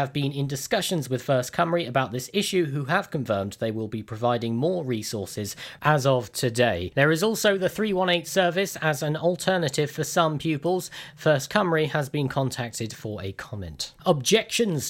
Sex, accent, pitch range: male, British, 125-170 Hz